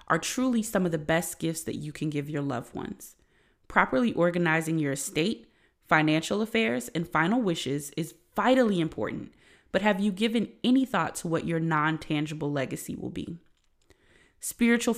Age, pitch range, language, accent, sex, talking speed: 20-39, 155-210 Hz, English, American, female, 160 wpm